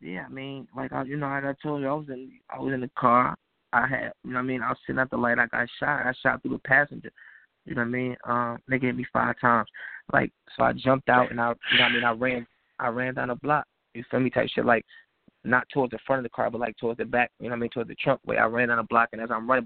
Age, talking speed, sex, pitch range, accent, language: 20-39, 325 wpm, male, 115-130 Hz, American, English